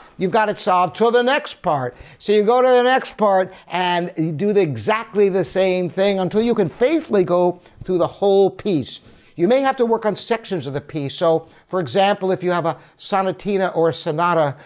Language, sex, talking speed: English, male, 215 wpm